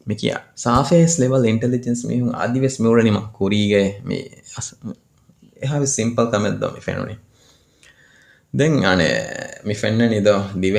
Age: 20-39